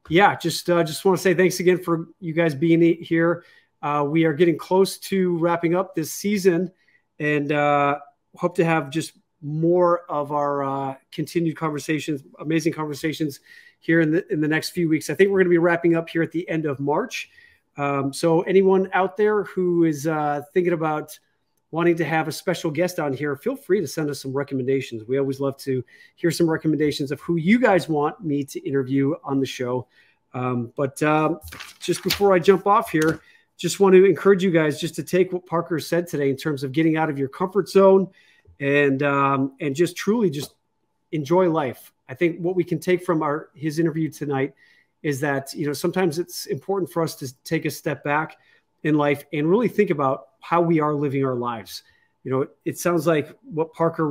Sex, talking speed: male, 205 wpm